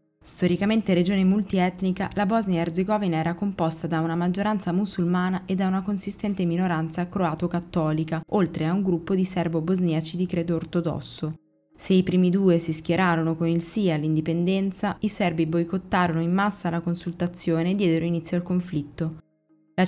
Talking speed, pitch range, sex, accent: 150 wpm, 165-190 Hz, female, native